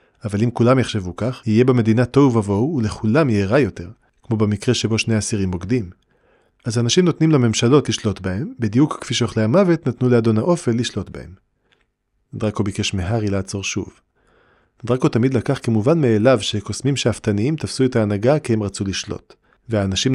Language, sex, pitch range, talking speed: Hebrew, male, 105-125 Hz, 160 wpm